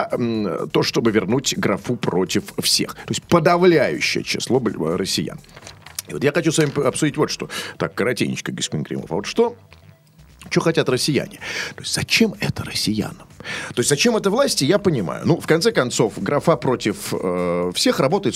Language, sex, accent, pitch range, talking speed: Russian, male, native, 110-175 Hz, 155 wpm